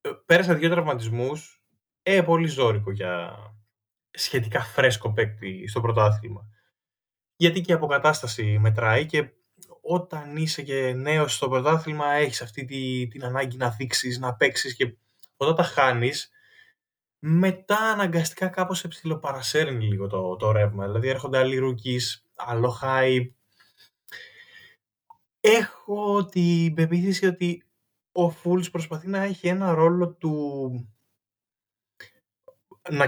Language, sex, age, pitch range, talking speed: Greek, male, 20-39, 115-175 Hz, 115 wpm